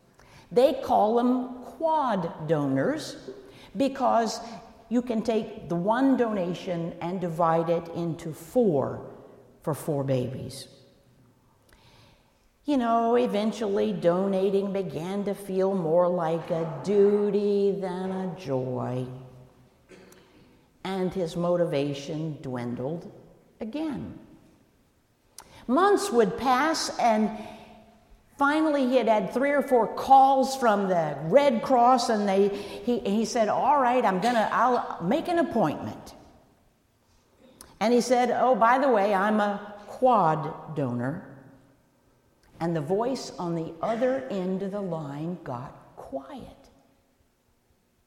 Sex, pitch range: female, 160-235 Hz